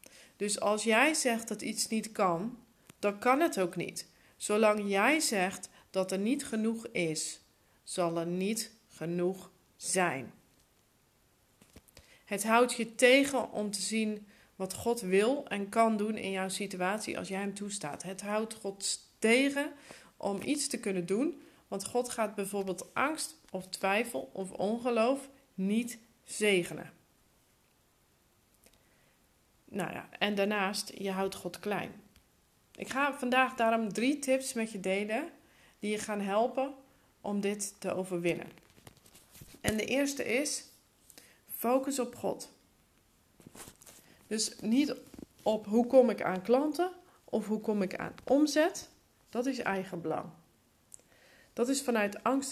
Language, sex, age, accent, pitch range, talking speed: Dutch, female, 40-59, Dutch, 195-255 Hz, 135 wpm